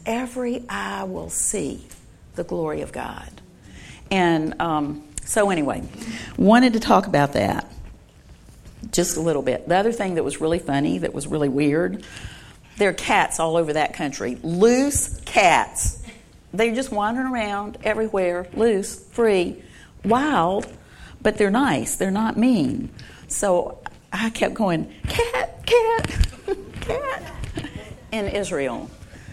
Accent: American